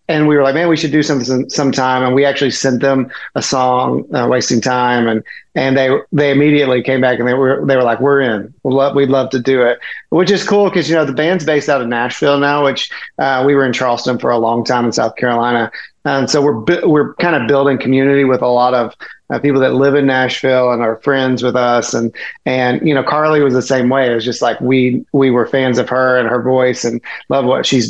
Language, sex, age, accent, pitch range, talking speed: English, male, 30-49, American, 125-140 Hz, 245 wpm